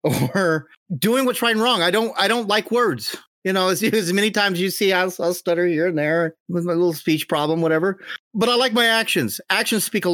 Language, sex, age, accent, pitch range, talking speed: English, male, 40-59, American, 145-210 Hz, 235 wpm